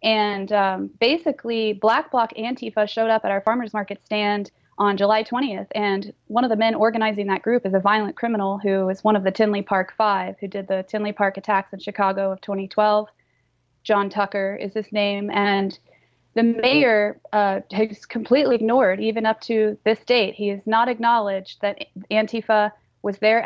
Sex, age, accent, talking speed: female, 20-39, American, 180 wpm